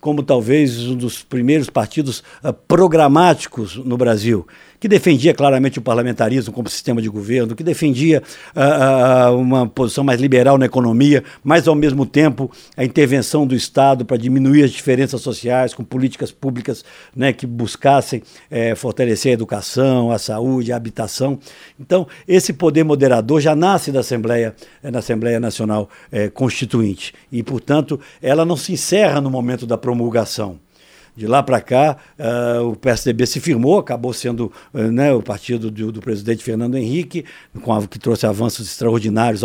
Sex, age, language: male, 60-79, Portuguese